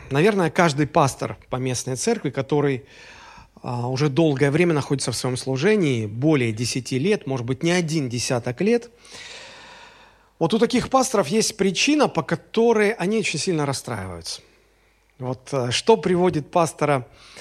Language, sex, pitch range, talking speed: Russian, male, 130-180 Hz, 135 wpm